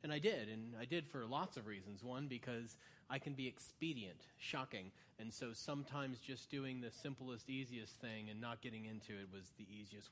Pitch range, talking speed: 125-165 Hz, 200 wpm